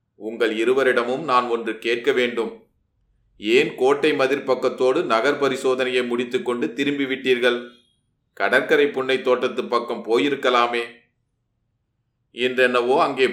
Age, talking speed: 30-49, 85 wpm